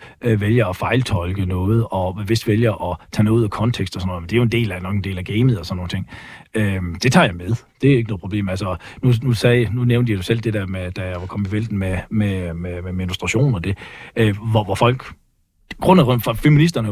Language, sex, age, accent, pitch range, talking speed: Danish, male, 40-59, native, 100-130 Hz, 255 wpm